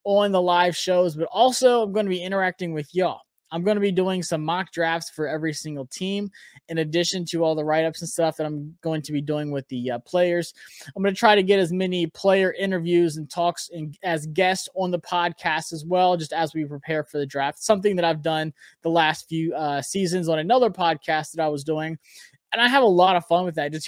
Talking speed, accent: 240 wpm, American